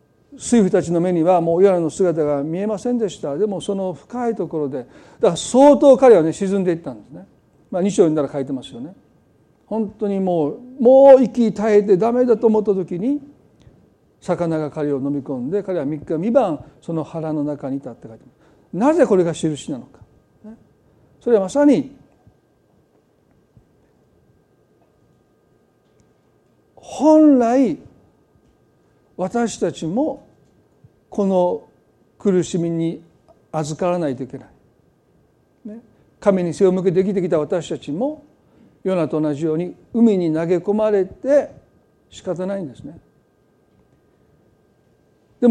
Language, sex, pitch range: Japanese, male, 160-230 Hz